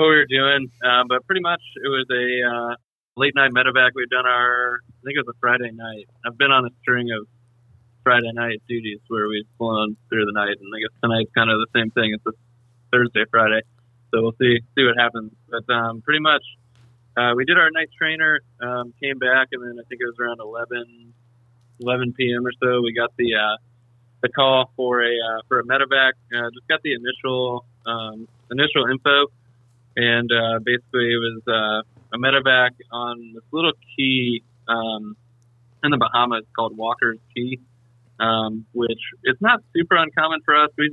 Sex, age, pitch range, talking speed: male, 20-39, 115-125 Hz, 195 wpm